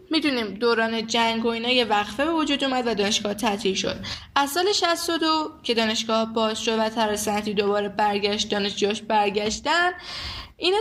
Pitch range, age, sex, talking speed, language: 205-265 Hz, 10-29, female, 155 wpm, Persian